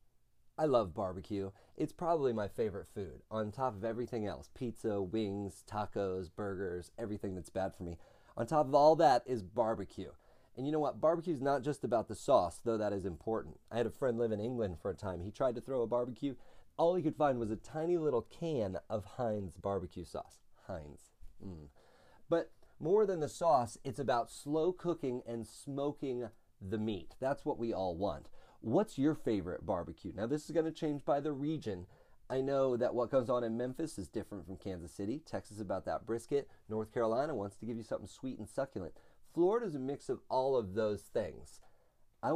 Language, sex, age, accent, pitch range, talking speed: English, male, 30-49, American, 100-135 Hz, 205 wpm